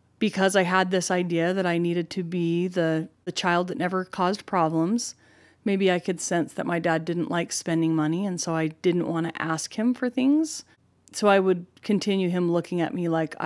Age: 30-49